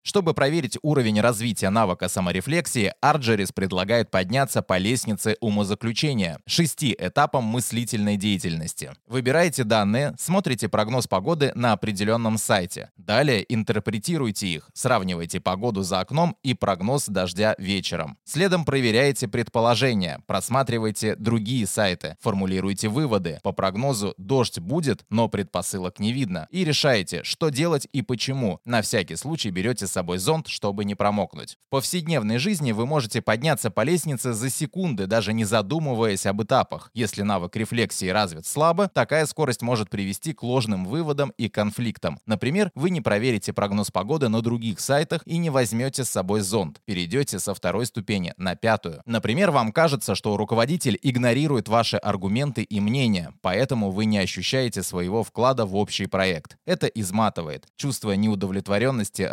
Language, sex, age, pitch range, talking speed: Russian, male, 20-39, 100-135 Hz, 140 wpm